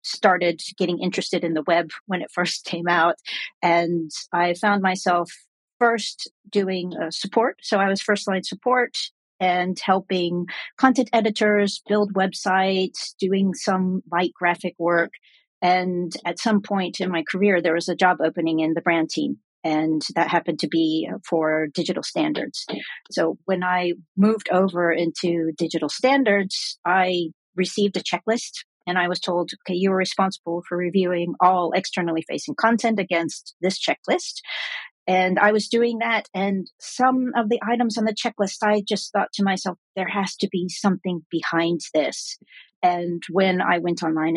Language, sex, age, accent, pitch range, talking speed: English, female, 40-59, American, 170-200 Hz, 160 wpm